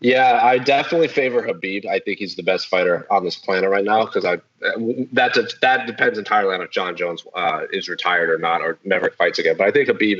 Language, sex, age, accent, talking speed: English, male, 30-49, American, 235 wpm